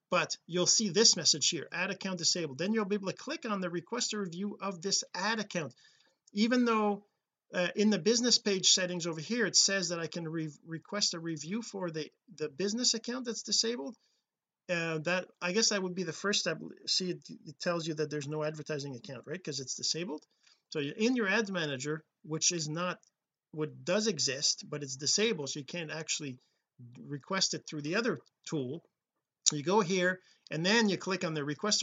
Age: 40-59